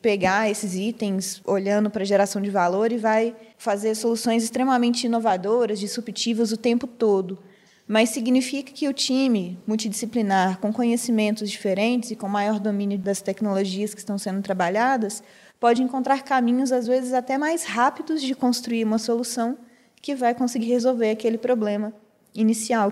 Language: Portuguese